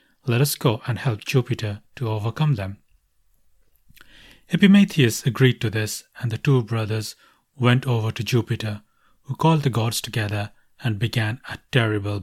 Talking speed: 145 wpm